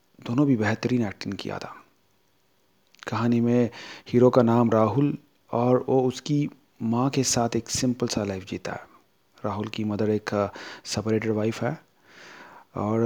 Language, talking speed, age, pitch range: Hindi, 145 wpm, 30-49, 110-135 Hz